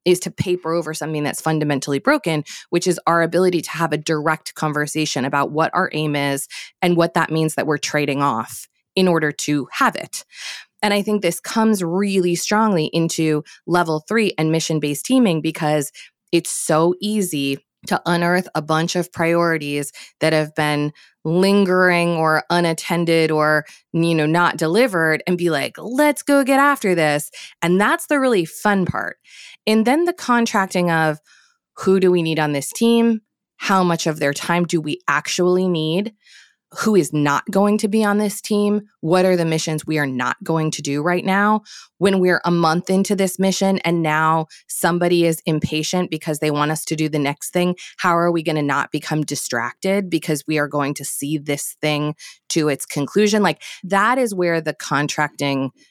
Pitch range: 150-185 Hz